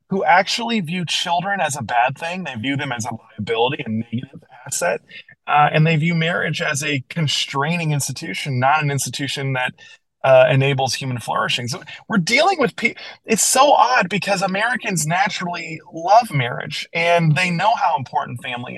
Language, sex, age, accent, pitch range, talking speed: English, male, 20-39, American, 135-175 Hz, 170 wpm